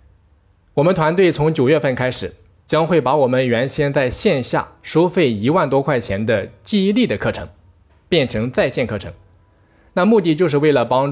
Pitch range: 100-150 Hz